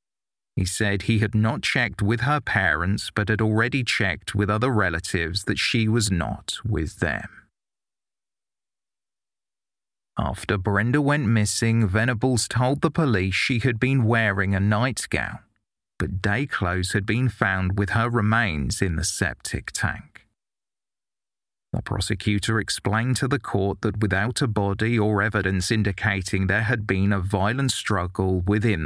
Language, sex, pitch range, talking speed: English, male, 95-115 Hz, 145 wpm